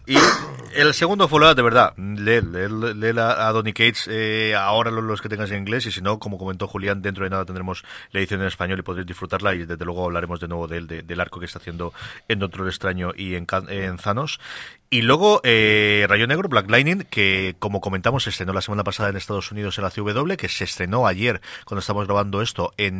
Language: Spanish